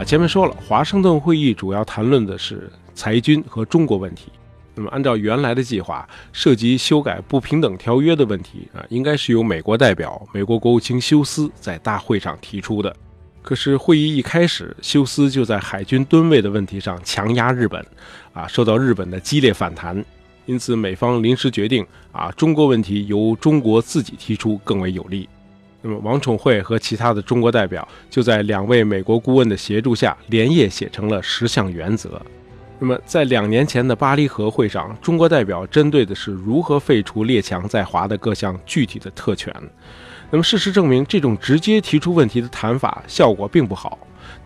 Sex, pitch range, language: male, 100-135 Hz, Chinese